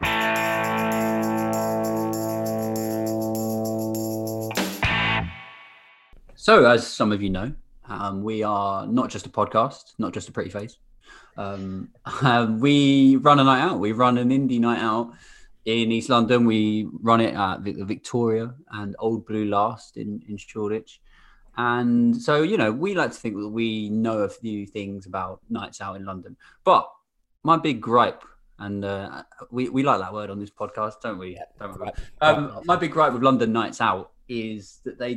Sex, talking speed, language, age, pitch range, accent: male, 160 wpm, English, 20-39, 105-120 Hz, British